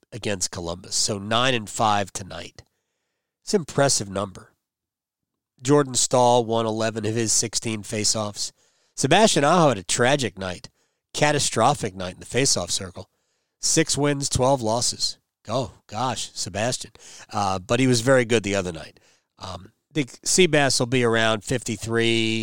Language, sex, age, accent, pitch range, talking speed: English, male, 40-59, American, 110-135 Hz, 145 wpm